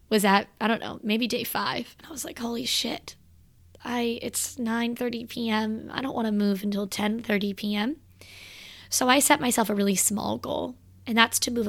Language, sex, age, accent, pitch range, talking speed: English, female, 20-39, American, 200-240 Hz, 190 wpm